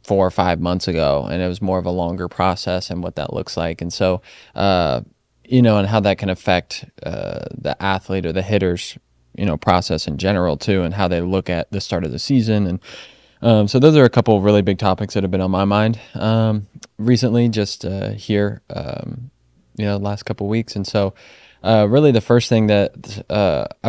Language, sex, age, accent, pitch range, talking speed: English, male, 20-39, American, 90-110 Hz, 220 wpm